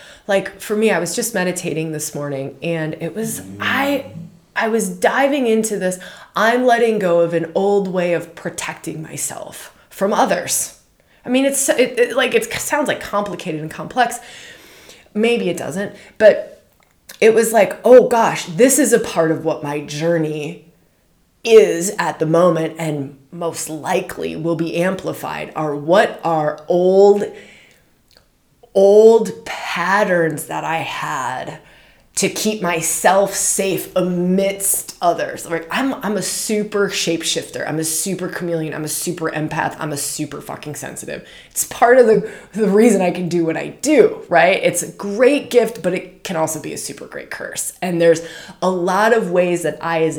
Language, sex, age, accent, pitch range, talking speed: English, female, 20-39, American, 165-220 Hz, 165 wpm